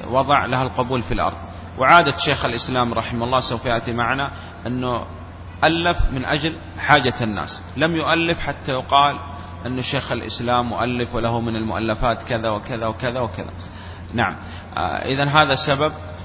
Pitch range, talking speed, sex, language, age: 90-130 Hz, 145 wpm, male, Arabic, 30-49